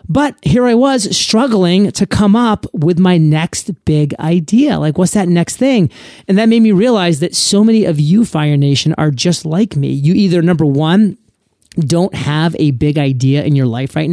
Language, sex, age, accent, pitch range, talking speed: English, male, 30-49, American, 140-180 Hz, 200 wpm